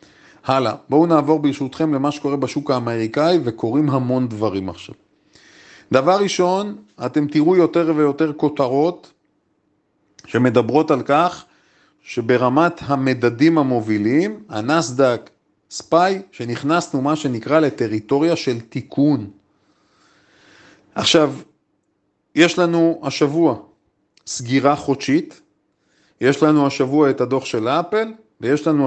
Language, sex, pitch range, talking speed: Hebrew, male, 120-155 Hz, 100 wpm